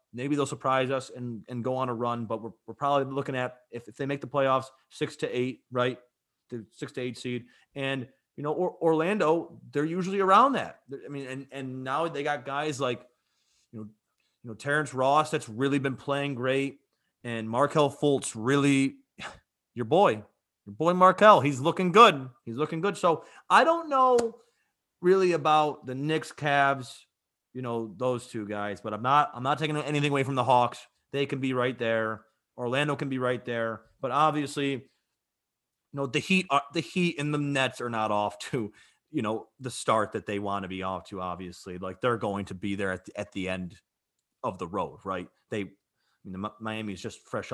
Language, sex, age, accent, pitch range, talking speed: English, male, 30-49, American, 110-145 Hz, 205 wpm